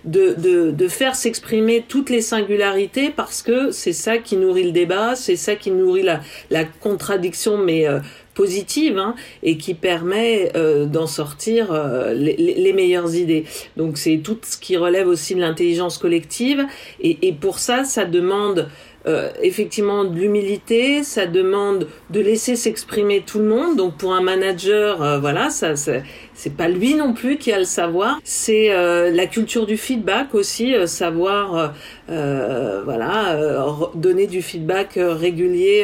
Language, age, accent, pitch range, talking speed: French, 40-59, French, 175-230 Hz, 165 wpm